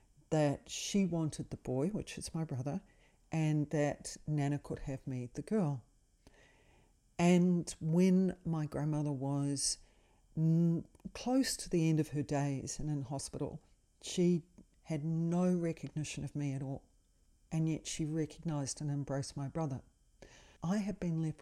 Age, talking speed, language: 40-59, 150 wpm, English